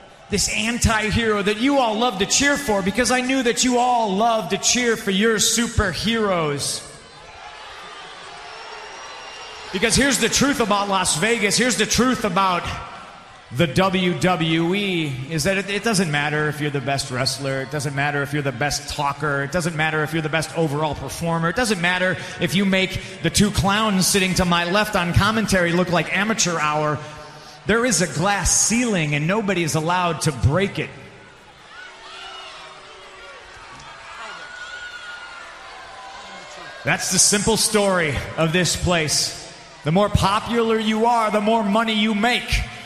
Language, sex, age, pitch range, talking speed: English, male, 30-49, 165-230 Hz, 155 wpm